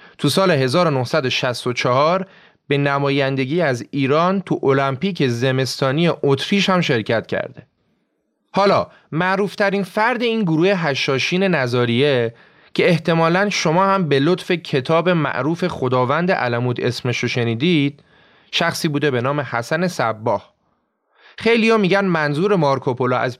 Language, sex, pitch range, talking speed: Persian, male, 135-190 Hz, 115 wpm